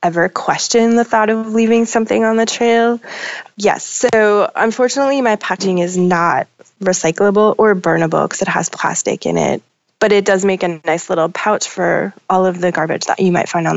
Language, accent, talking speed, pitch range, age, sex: English, American, 190 wpm, 175-220 Hz, 20-39, female